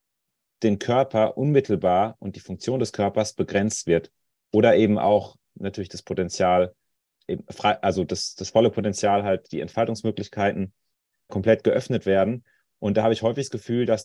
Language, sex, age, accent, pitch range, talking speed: German, male, 30-49, German, 100-115 Hz, 150 wpm